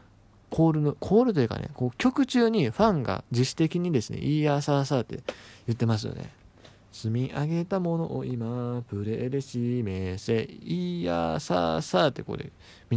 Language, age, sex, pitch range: Japanese, 20-39, male, 105-145 Hz